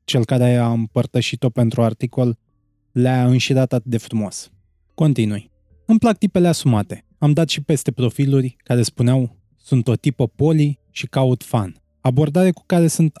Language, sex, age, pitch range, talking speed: Romanian, male, 20-39, 115-150 Hz, 155 wpm